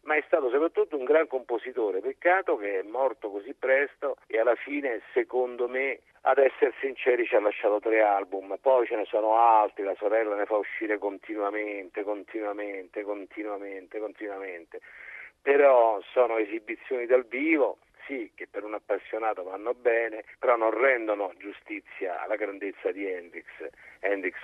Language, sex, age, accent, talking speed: Italian, male, 50-69, native, 150 wpm